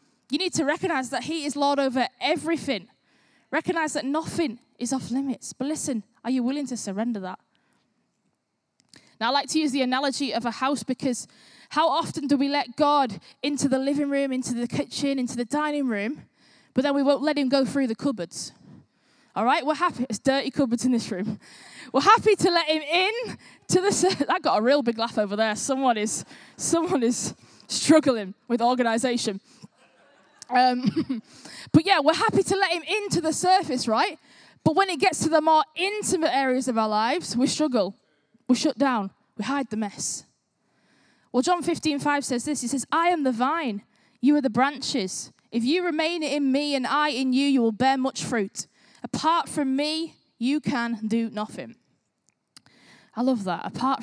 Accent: British